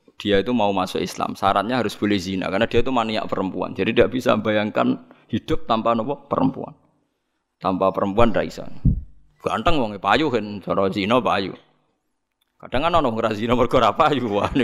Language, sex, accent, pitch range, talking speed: Indonesian, male, native, 100-120 Hz, 155 wpm